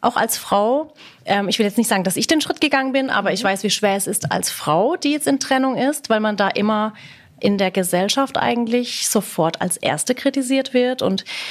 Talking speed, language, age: 220 wpm, German, 30-49